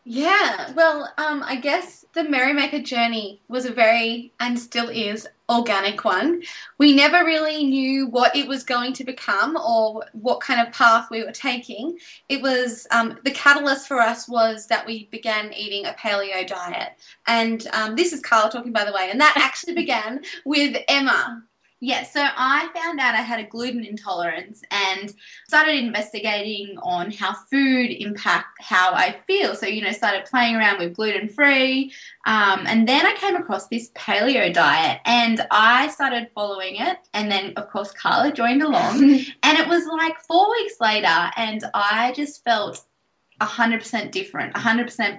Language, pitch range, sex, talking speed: English, 215-280 Hz, female, 165 wpm